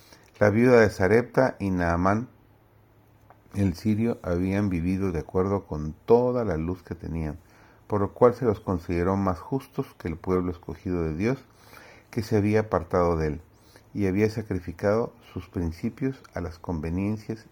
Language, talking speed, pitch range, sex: Spanish, 160 wpm, 85-110 Hz, male